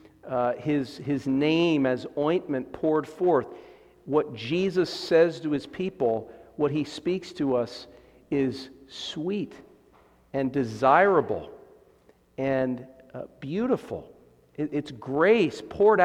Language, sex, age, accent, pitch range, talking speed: English, male, 50-69, American, 130-170 Hz, 110 wpm